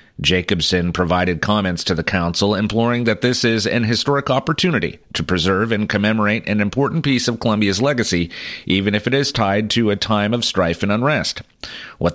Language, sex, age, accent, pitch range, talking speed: English, male, 40-59, American, 95-125 Hz, 180 wpm